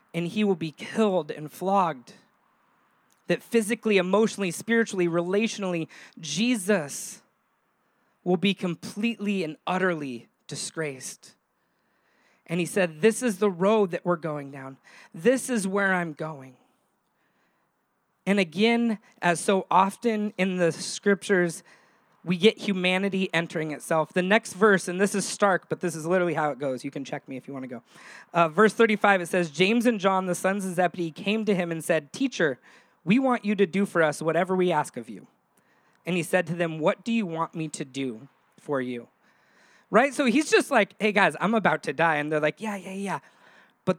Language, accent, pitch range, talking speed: English, American, 165-210 Hz, 180 wpm